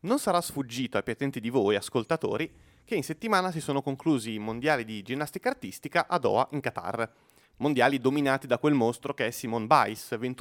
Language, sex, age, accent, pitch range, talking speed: Italian, male, 30-49, native, 125-175 Hz, 185 wpm